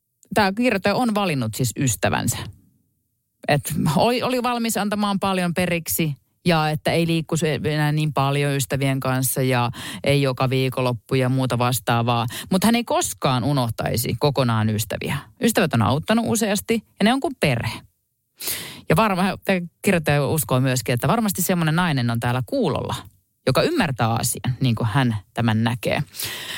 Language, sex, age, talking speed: Finnish, female, 30-49, 145 wpm